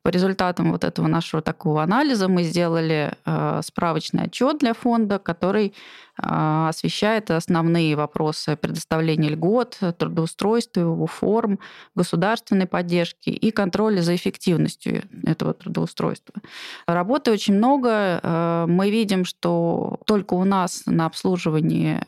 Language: Russian